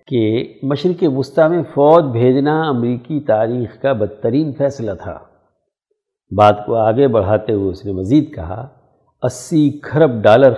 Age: 60-79